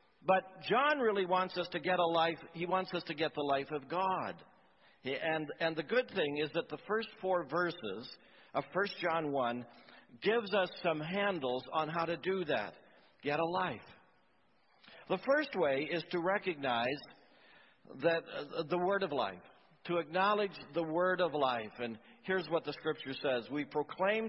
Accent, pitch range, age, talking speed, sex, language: American, 140-190 Hz, 60-79, 175 wpm, male, English